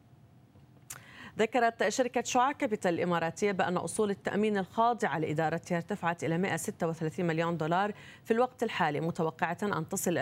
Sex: female